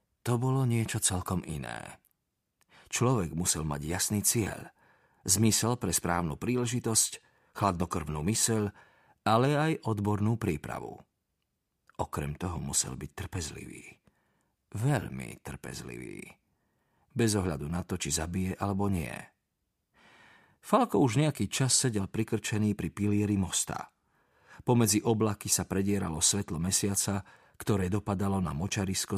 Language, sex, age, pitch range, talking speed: Slovak, male, 40-59, 95-115 Hz, 110 wpm